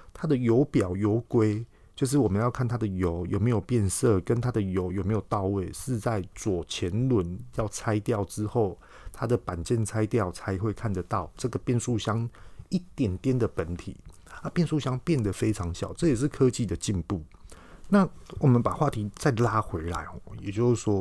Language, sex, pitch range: Chinese, male, 100-130 Hz